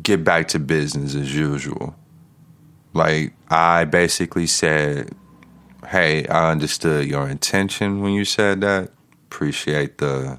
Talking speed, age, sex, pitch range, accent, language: 120 wpm, 30-49, male, 75-95 Hz, American, English